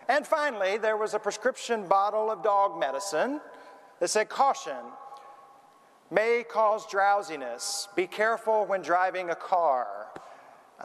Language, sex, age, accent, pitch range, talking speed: English, male, 40-59, American, 165-230 Hz, 125 wpm